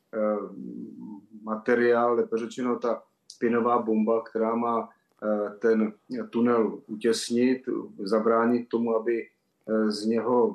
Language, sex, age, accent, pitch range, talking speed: Czech, male, 30-49, native, 110-120 Hz, 85 wpm